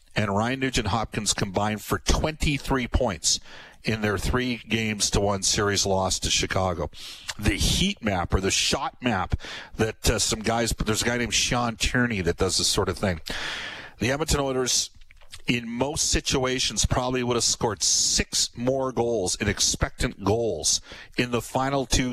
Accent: American